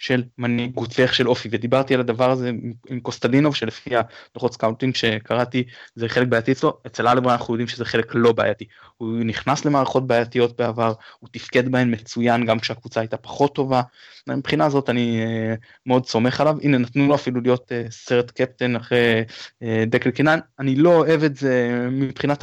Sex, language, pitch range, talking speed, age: male, Hebrew, 120-150 Hz, 165 wpm, 20-39